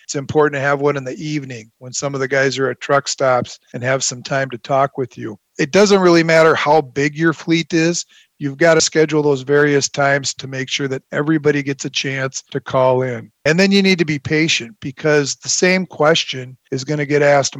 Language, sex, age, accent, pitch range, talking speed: English, male, 40-59, American, 135-155 Hz, 230 wpm